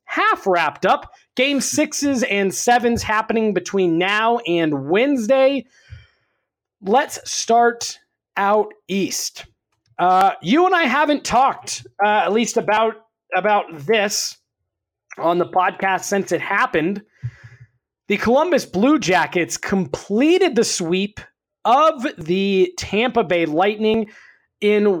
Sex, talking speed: male, 115 wpm